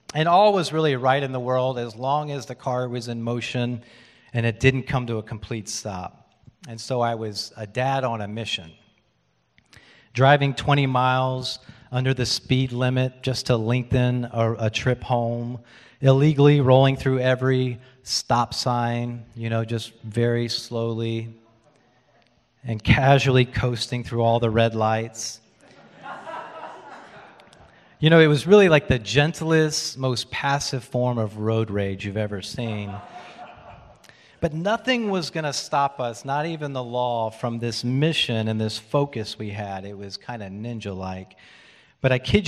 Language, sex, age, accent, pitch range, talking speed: English, male, 40-59, American, 110-130 Hz, 155 wpm